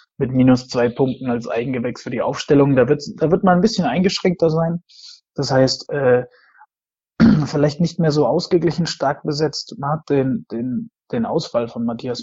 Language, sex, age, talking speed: German, male, 20-39, 165 wpm